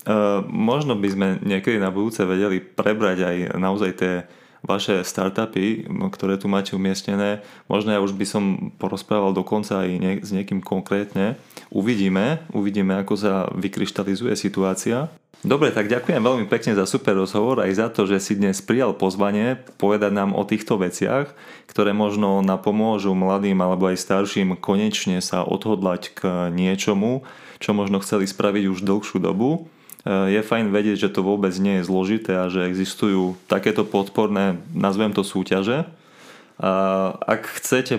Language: Slovak